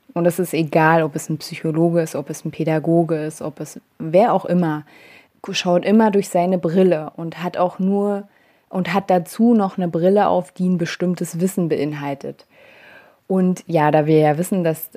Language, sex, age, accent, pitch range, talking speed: German, female, 20-39, German, 165-195 Hz, 190 wpm